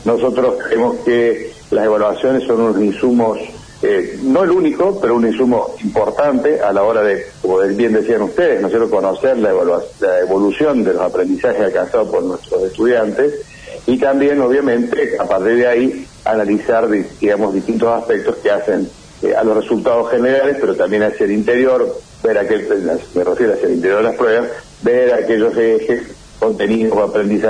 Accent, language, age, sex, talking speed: Argentinian, Spanish, 70-89, male, 155 wpm